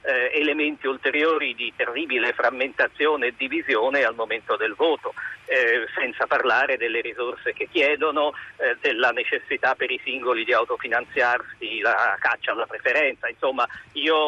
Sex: male